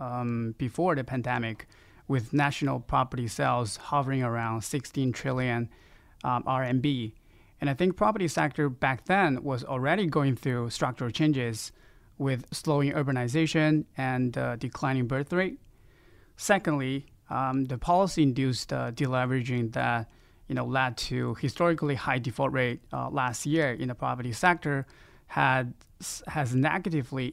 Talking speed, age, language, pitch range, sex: 130 wpm, 20-39, English, 125-150 Hz, male